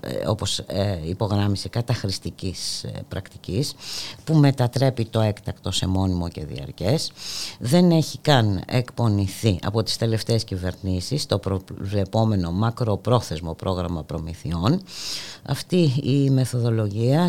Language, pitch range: Greek, 95-130 Hz